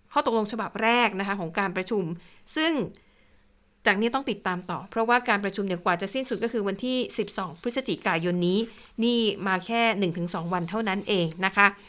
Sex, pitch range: female, 190-230 Hz